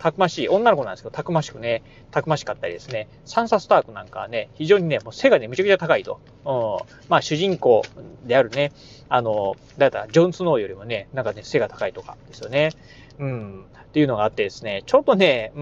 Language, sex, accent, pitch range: Japanese, male, native, 130-190 Hz